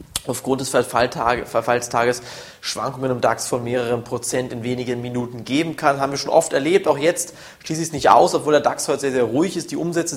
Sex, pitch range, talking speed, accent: male, 120-150 Hz, 210 wpm, German